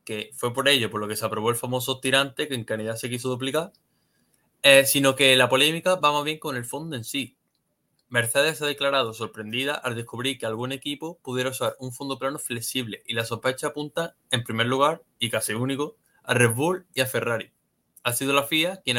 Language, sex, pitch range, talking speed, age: Spanish, male, 115-140 Hz, 210 wpm, 20-39